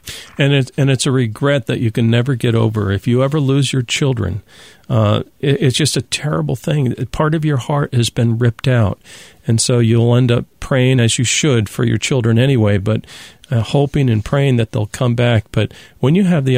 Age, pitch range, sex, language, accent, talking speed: 50-69, 115-150 Hz, male, English, American, 215 wpm